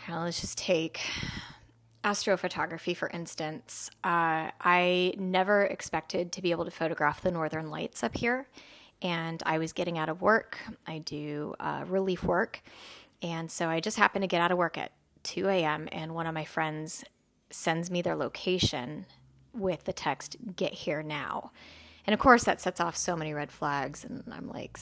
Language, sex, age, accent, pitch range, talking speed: English, female, 20-39, American, 160-190 Hz, 175 wpm